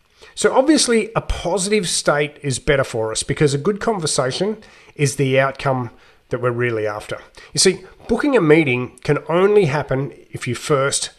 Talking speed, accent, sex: 165 wpm, Australian, male